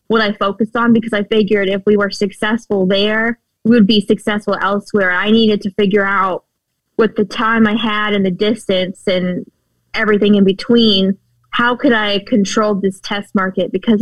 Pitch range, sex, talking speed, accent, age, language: 200-225 Hz, female, 180 wpm, American, 20-39, English